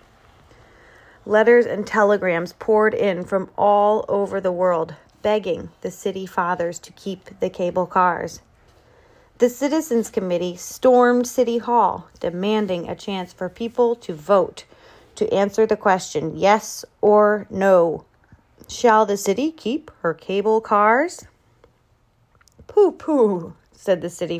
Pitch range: 175-240 Hz